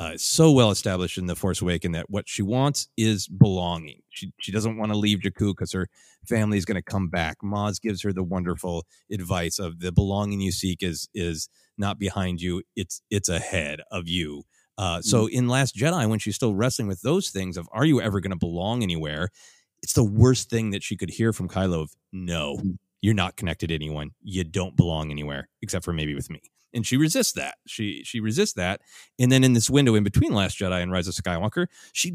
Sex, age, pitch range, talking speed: male, 30-49, 90-115 Hz, 220 wpm